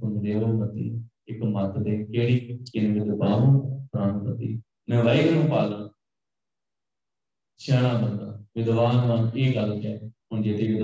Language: Punjabi